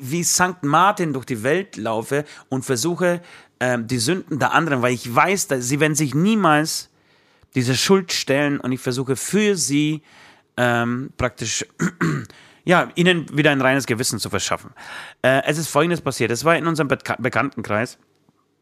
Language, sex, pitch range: German, male, 115-155 Hz